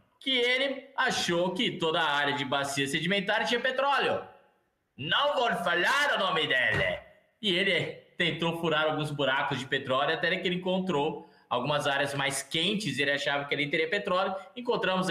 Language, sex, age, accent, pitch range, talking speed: Portuguese, male, 20-39, Brazilian, 130-185 Hz, 170 wpm